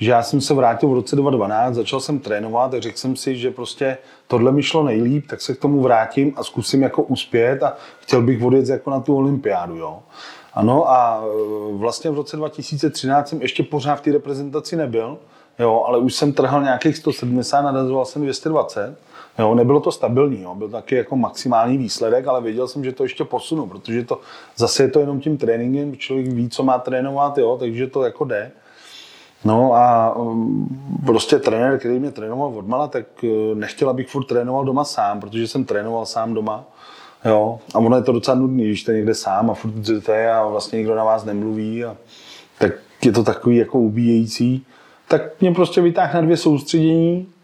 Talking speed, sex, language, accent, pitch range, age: 195 wpm, male, Czech, native, 120-150 Hz, 30-49